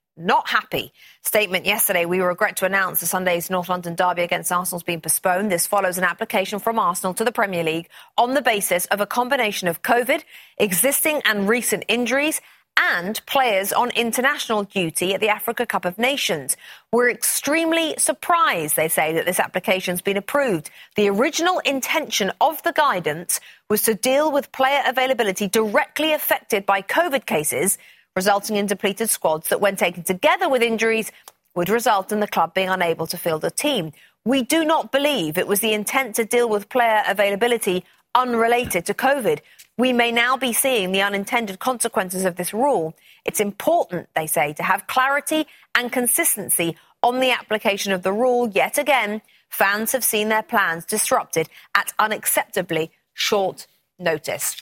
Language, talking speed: English, 170 wpm